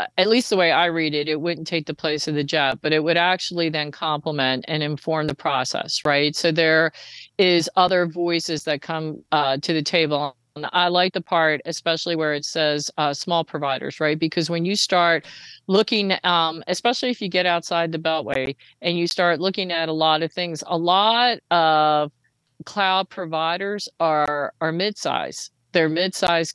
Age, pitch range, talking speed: 50-69, 155-185 Hz, 190 wpm